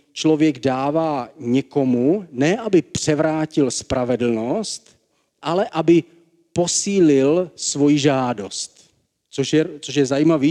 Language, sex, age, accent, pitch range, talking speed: Czech, male, 40-59, native, 130-155 Hz, 90 wpm